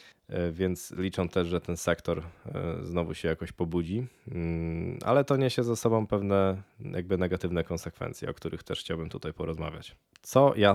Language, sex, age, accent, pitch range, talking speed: Polish, male, 20-39, native, 85-100 Hz, 150 wpm